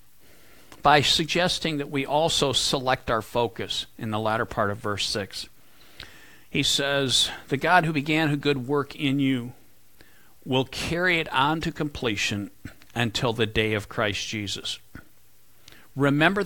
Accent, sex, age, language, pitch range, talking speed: American, male, 50-69, English, 120-170 Hz, 140 wpm